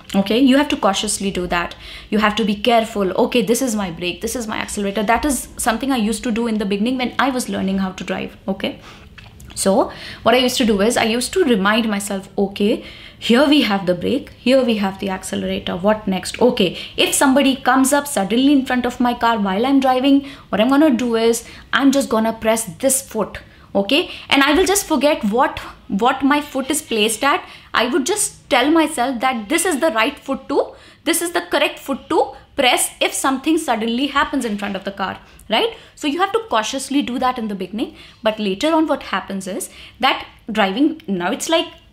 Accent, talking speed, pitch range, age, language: native, 220 wpm, 200-275 Hz, 20-39, Hindi